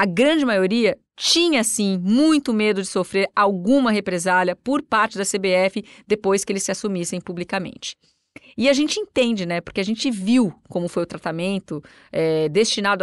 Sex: female